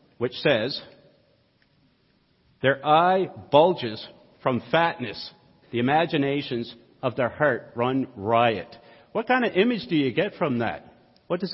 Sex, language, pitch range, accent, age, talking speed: male, English, 130-185 Hz, American, 50-69, 130 wpm